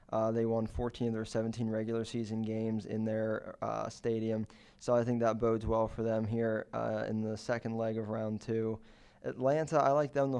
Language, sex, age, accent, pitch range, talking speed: English, male, 20-39, American, 115-125 Hz, 210 wpm